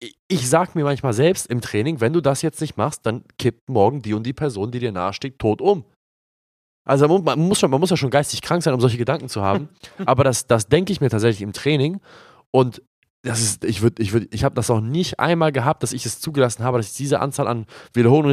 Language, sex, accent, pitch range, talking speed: German, male, German, 120-155 Hz, 240 wpm